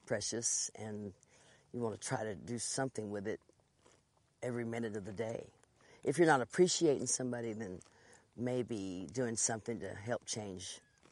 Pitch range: 110-135 Hz